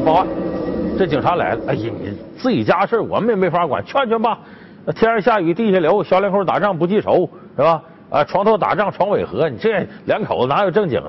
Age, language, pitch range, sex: 50-69, Chinese, 185-255 Hz, male